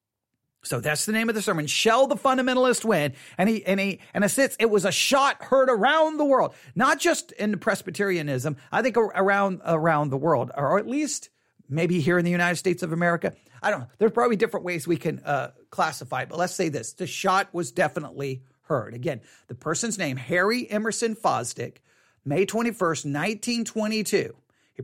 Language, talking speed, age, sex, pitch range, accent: English, 195 wpm, 40-59, male, 175-240 Hz, American